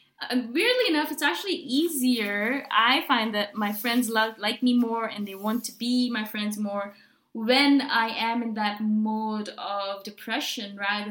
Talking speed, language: 165 wpm, English